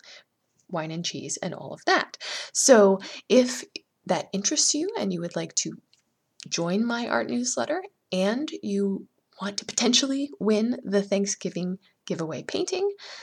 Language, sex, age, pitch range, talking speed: English, female, 20-39, 180-220 Hz, 140 wpm